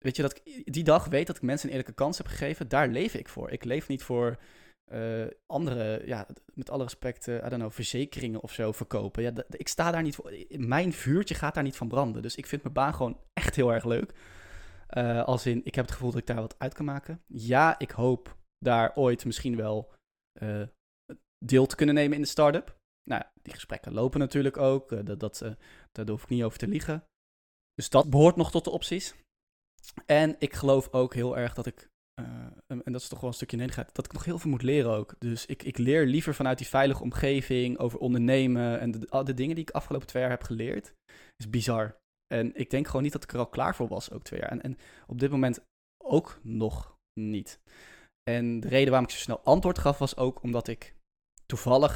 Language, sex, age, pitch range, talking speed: Dutch, male, 20-39, 115-140 Hz, 230 wpm